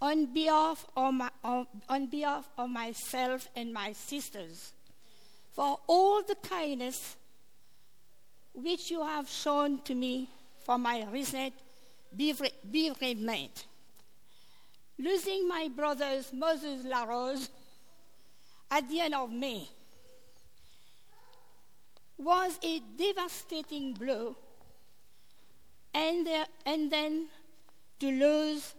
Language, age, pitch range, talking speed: English, 50-69, 260-310 Hz, 100 wpm